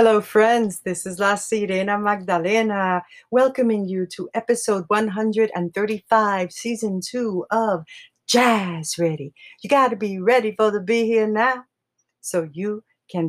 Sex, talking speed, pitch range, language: female, 135 wpm, 175-225 Hz, English